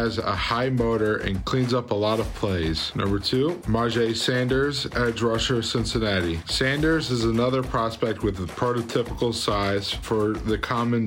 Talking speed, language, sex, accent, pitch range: 150 wpm, English, male, American, 105-125 Hz